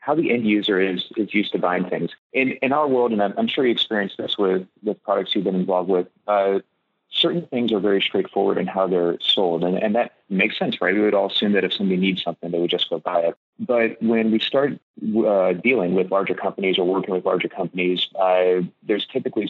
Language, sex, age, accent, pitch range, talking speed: English, male, 30-49, American, 90-105 Hz, 235 wpm